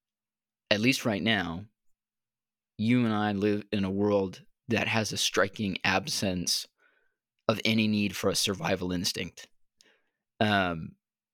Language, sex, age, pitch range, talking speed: English, male, 20-39, 95-110 Hz, 125 wpm